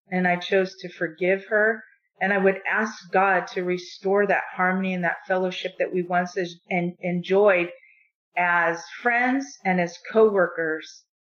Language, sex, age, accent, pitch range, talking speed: English, female, 40-59, American, 180-220 Hz, 140 wpm